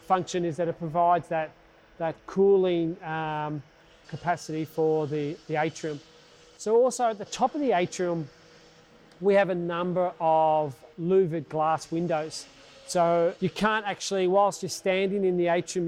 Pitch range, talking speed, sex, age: 160-185 Hz, 150 wpm, male, 40-59